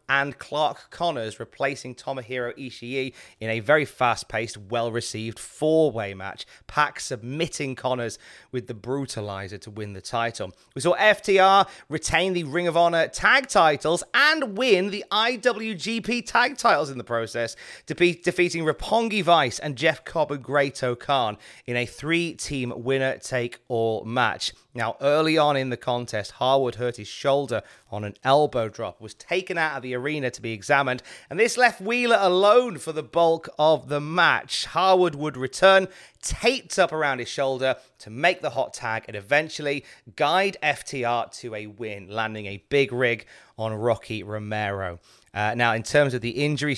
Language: English